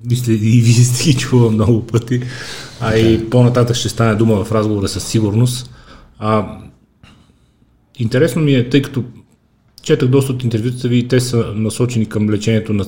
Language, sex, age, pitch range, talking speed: Bulgarian, male, 30-49, 95-115 Hz, 150 wpm